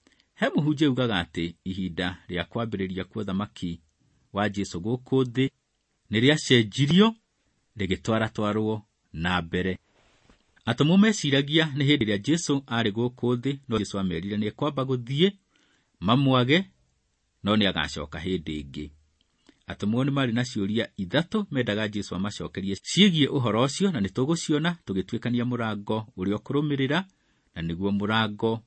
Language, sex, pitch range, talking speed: English, male, 95-135 Hz, 115 wpm